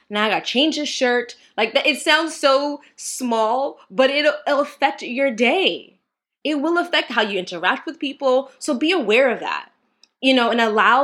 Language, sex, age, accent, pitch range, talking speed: English, female, 20-39, American, 190-265 Hz, 190 wpm